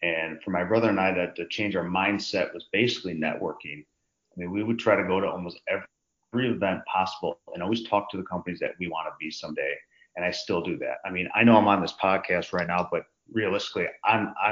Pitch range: 90-110 Hz